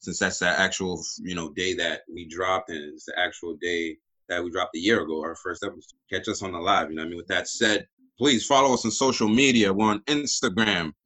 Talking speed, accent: 250 wpm, American